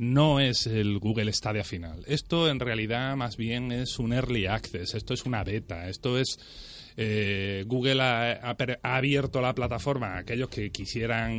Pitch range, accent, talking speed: 105-130 Hz, Spanish, 170 wpm